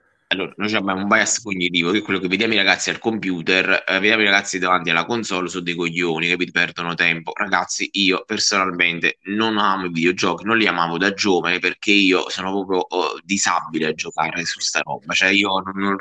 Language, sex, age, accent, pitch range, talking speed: Italian, male, 20-39, native, 90-110 Hz, 205 wpm